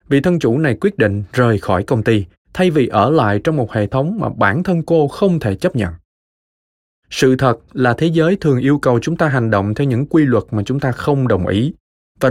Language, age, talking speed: Vietnamese, 20-39, 240 wpm